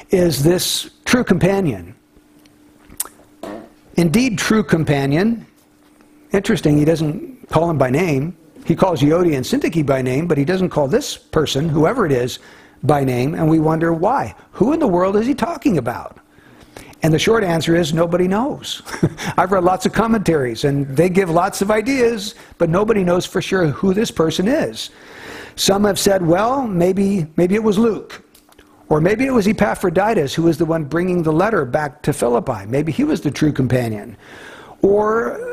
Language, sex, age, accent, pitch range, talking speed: English, male, 60-79, American, 160-210 Hz, 170 wpm